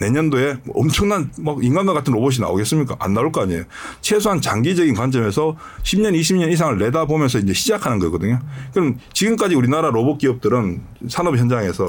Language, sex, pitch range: Korean, male, 120-175 Hz